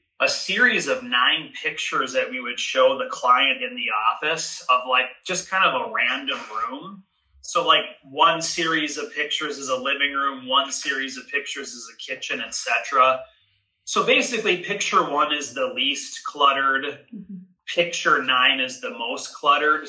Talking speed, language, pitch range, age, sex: 165 wpm, English, 130-190 Hz, 30-49, male